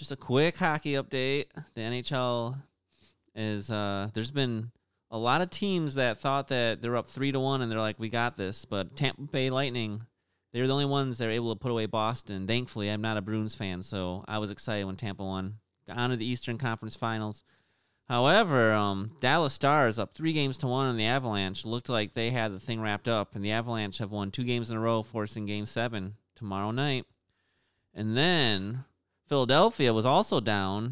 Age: 30-49